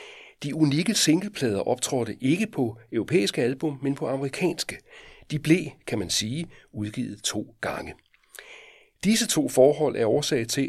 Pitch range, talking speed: 115-155 Hz, 140 wpm